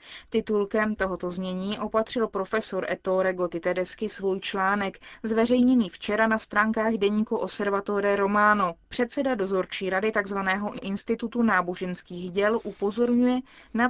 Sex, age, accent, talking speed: female, 20-39, native, 110 wpm